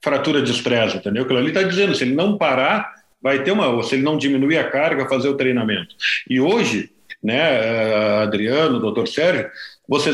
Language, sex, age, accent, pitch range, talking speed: Portuguese, male, 50-69, Brazilian, 135-190 Hz, 190 wpm